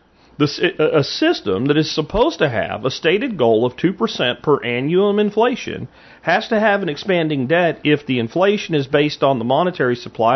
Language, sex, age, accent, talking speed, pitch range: English, male, 40-59, American, 175 wpm, 120-180 Hz